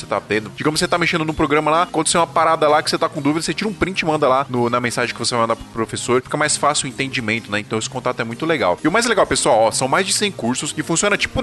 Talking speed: 325 wpm